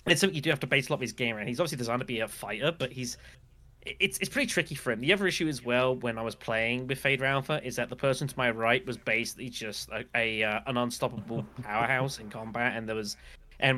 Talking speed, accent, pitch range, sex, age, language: 270 wpm, British, 110-135 Hz, male, 20-39, English